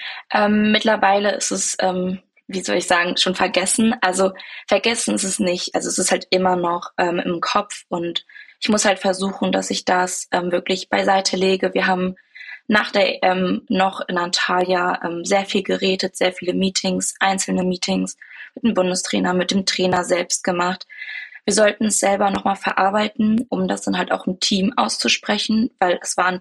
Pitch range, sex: 185-210 Hz, female